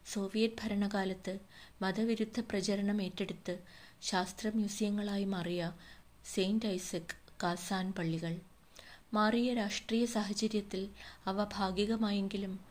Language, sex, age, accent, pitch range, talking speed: Malayalam, female, 20-39, native, 180-210 Hz, 80 wpm